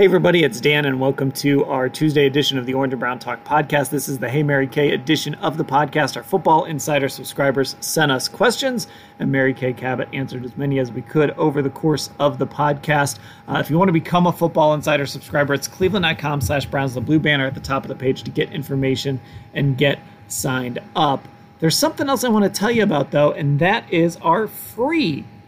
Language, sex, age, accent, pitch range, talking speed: English, male, 30-49, American, 135-165 Hz, 220 wpm